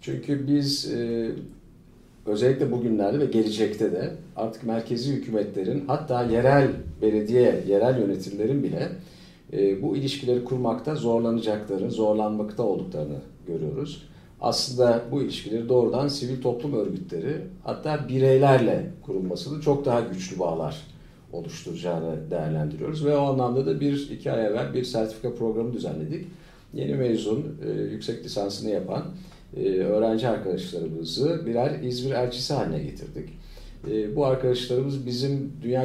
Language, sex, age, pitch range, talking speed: Turkish, male, 50-69, 105-140 Hz, 110 wpm